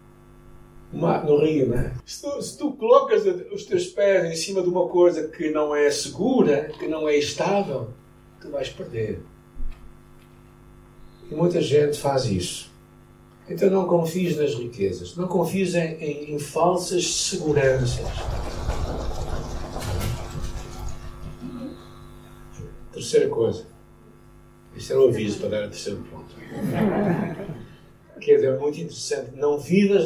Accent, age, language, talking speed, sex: Brazilian, 60-79, Portuguese, 125 wpm, male